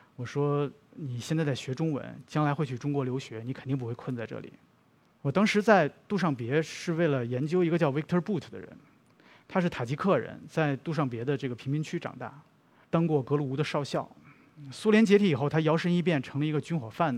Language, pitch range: Chinese, 130-165 Hz